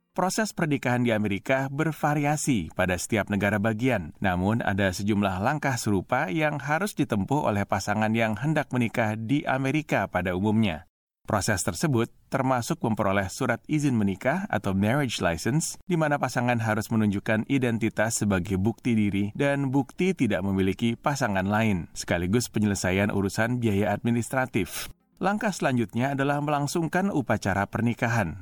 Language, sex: Indonesian, male